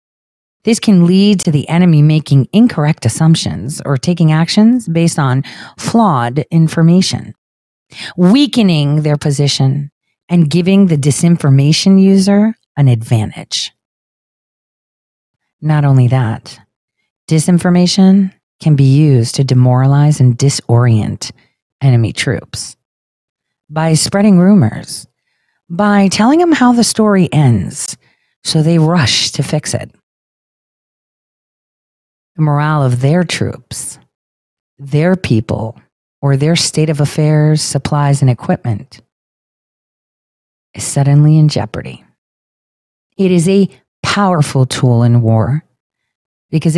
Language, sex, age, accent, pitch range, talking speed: English, female, 40-59, American, 135-180 Hz, 105 wpm